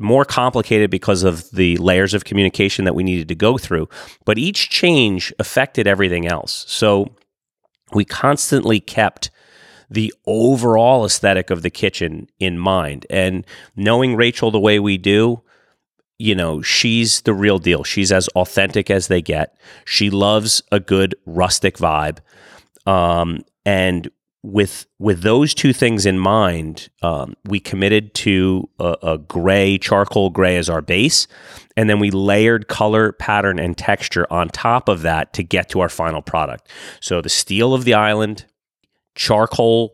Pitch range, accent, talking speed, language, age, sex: 95-110 Hz, American, 155 wpm, English, 30-49, male